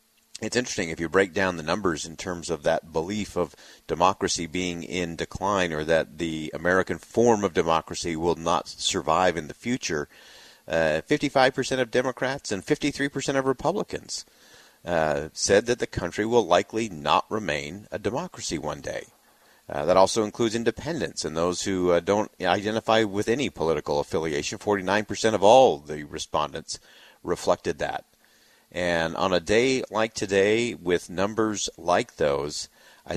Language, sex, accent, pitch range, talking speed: English, male, American, 85-110 Hz, 150 wpm